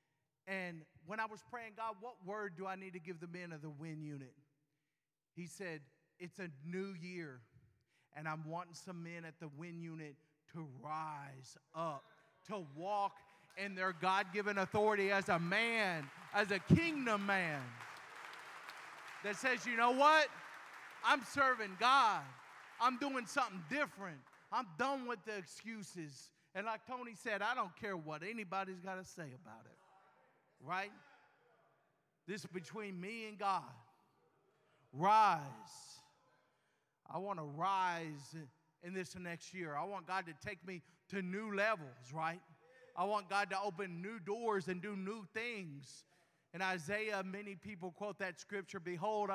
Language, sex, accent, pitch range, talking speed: English, male, American, 160-210 Hz, 155 wpm